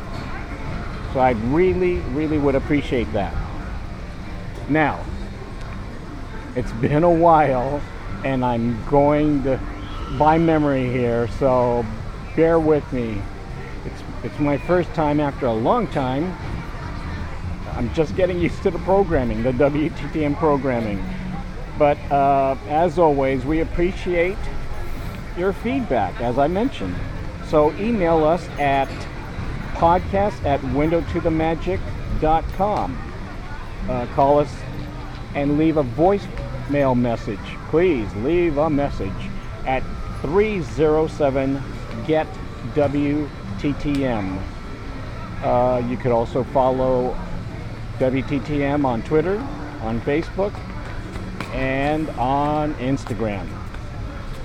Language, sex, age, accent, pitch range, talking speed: English, male, 50-69, American, 110-150 Hz, 100 wpm